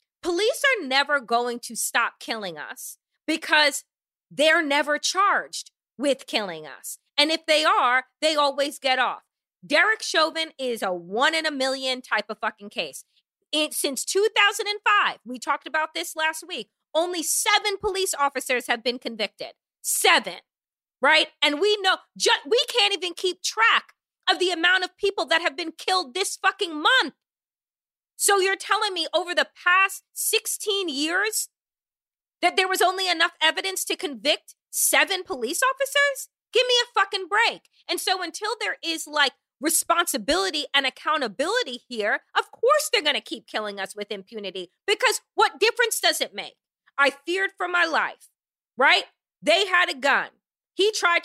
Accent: American